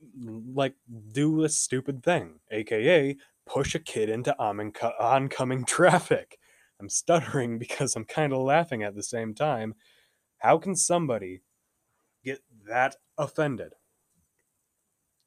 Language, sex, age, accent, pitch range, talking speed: English, male, 20-39, American, 100-140 Hz, 115 wpm